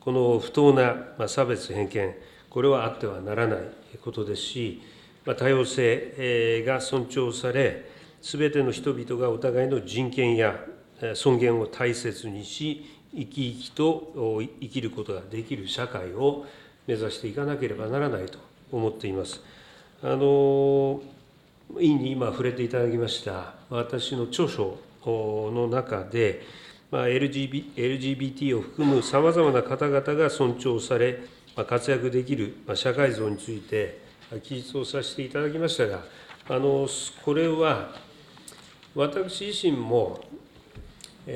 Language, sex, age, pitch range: Japanese, male, 40-59, 115-140 Hz